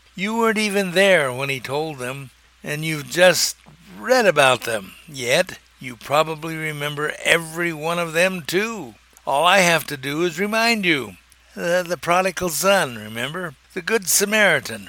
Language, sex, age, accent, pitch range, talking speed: English, male, 60-79, American, 145-185 Hz, 155 wpm